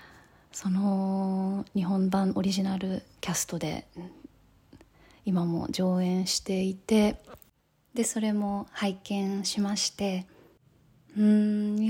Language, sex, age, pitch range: Japanese, female, 20-39, 185-220 Hz